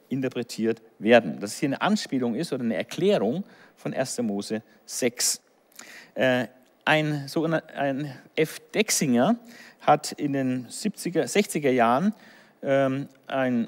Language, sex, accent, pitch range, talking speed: German, male, German, 130-210 Hz, 120 wpm